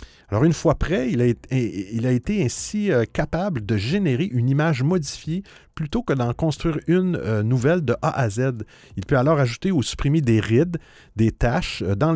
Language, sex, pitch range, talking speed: French, male, 115-165 Hz, 180 wpm